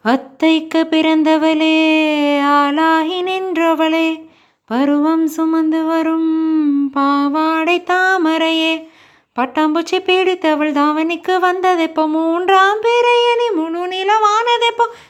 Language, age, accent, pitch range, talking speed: Tamil, 30-49, native, 310-415 Hz, 70 wpm